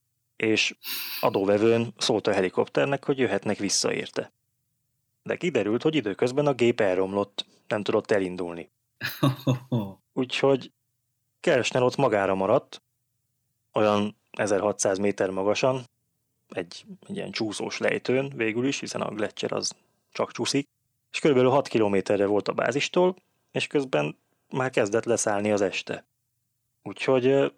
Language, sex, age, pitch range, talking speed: Hungarian, male, 20-39, 100-130 Hz, 120 wpm